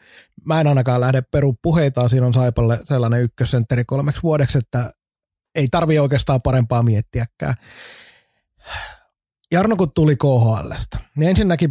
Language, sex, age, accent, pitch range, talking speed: Finnish, male, 30-49, native, 120-150 Hz, 130 wpm